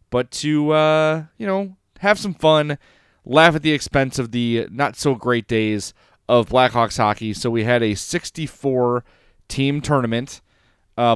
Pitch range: 110-145 Hz